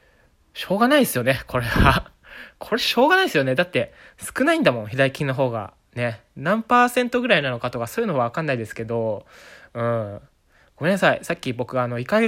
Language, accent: Japanese, native